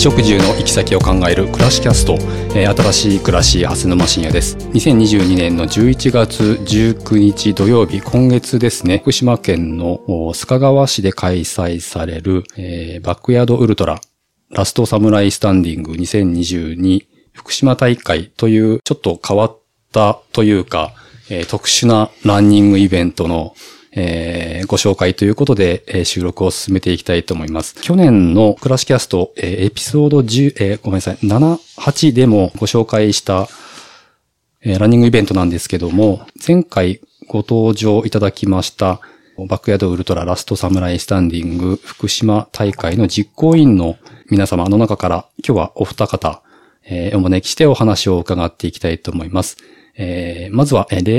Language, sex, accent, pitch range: Japanese, male, native, 90-115 Hz